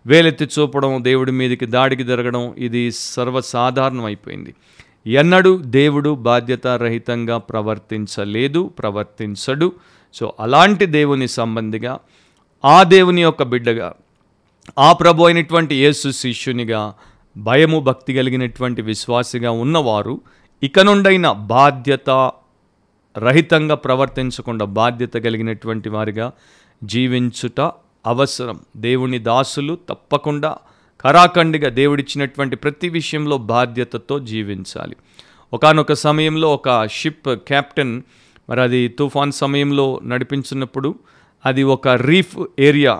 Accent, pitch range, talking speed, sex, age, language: native, 120-145 Hz, 90 wpm, male, 40-59, Telugu